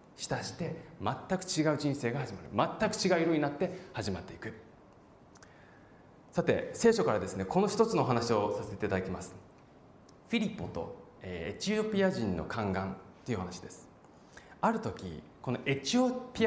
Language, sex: Japanese, male